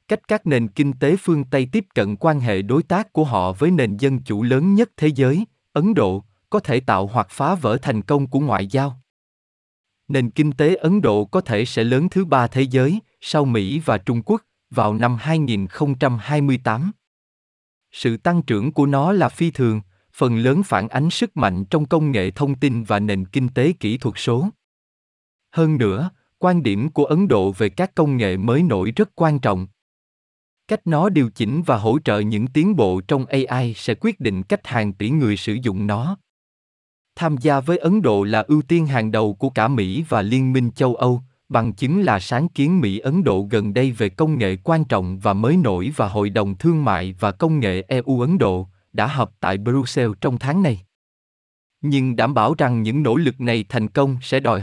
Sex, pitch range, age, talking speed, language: male, 110-155 Hz, 20-39, 205 wpm, Vietnamese